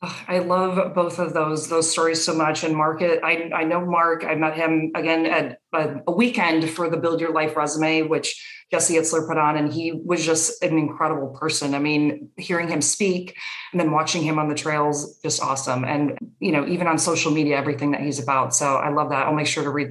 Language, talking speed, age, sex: English, 225 wpm, 30-49, female